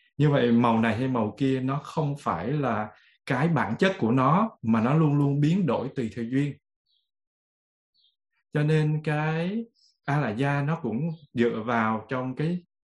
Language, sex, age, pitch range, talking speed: Vietnamese, male, 20-39, 115-155 Hz, 175 wpm